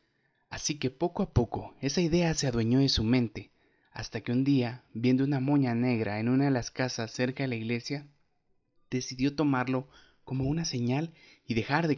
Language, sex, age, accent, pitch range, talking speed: Spanish, male, 30-49, Mexican, 120-150 Hz, 185 wpm